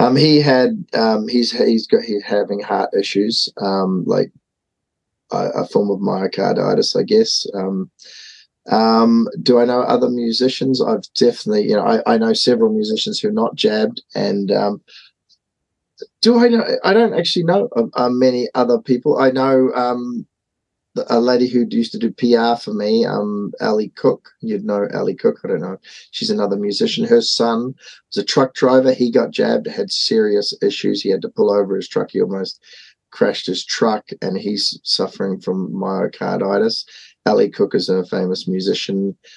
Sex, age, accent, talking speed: male, 20-39, Australian, 170 wpm